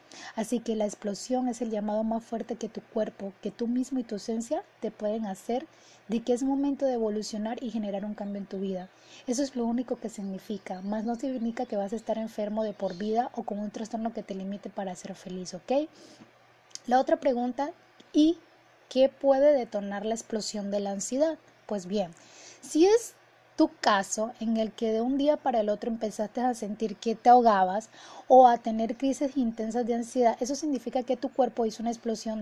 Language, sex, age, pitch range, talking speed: Spanish, female, 20-39, 215-260 Hz, 205 wpm